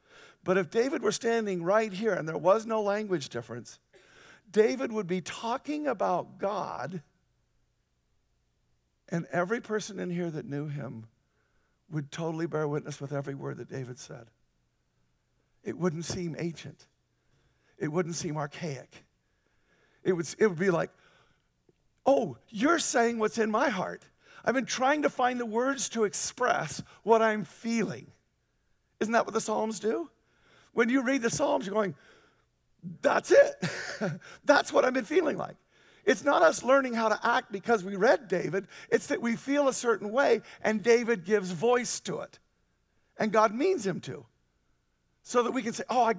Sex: male